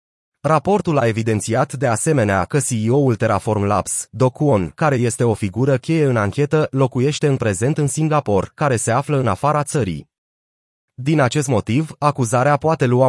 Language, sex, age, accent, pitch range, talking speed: Romanian, male, 30-49, native, 115-145 Hz, 160 wpm